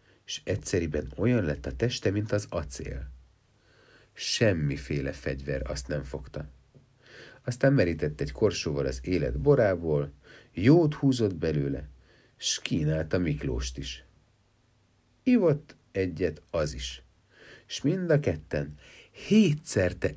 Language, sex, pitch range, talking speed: Hungarian, male, 75-110 Hz, 110 wpm